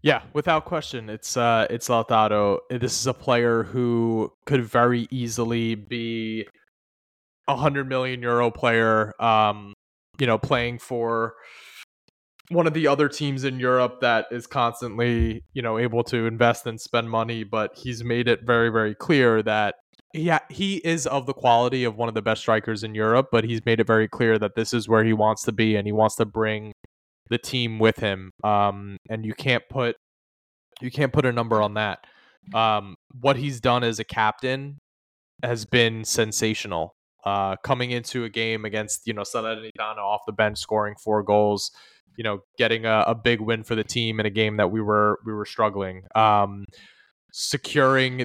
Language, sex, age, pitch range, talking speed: English, male, 20-39, 110-120 Hz, 185 wpm